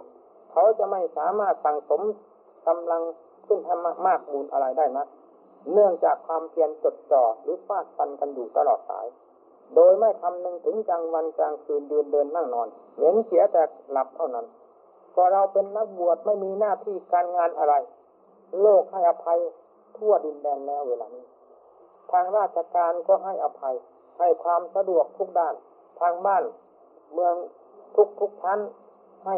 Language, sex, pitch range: Thai, male, 165-210 Hz